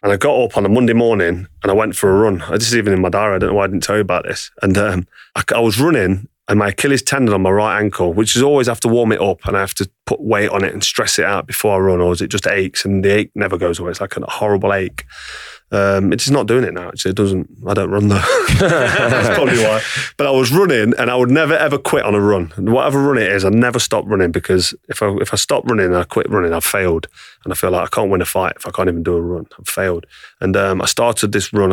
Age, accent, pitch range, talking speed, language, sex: 30-49, British, 90-115 Hz, 300 wpm, English, male